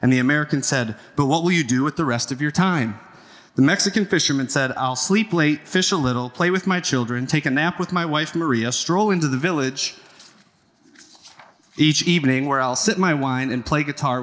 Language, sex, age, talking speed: English, male, 30-49, 210 wpm